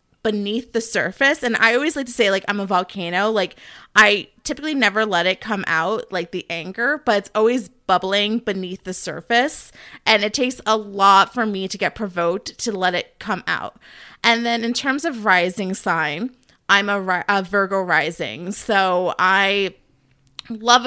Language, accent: English, American